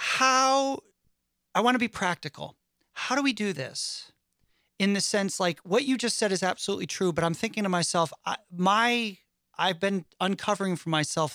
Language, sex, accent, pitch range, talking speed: English, male, American, 155-195 Hz, 175 wpm